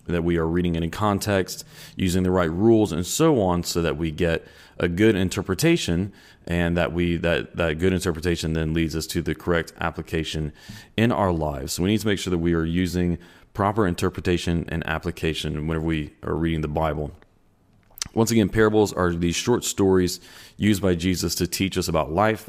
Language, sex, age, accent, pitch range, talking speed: English, male, 30-49, American, 80-95 Hz, 195 wpm